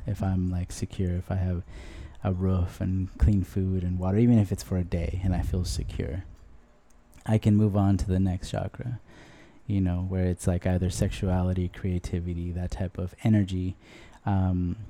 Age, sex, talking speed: 20-39, male, 180 wpm